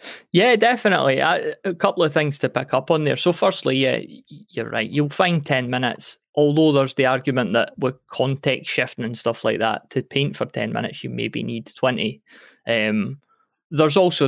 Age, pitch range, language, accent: 20-39, 130-155 Hz, English, British